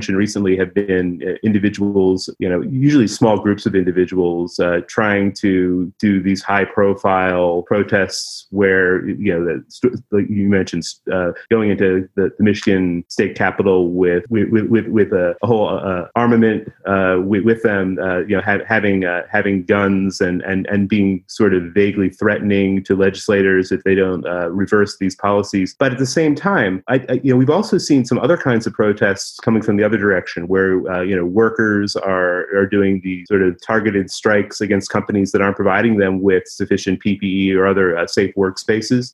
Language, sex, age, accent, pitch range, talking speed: English, male, 30-49, American, 95-110 Hz, 185 wpm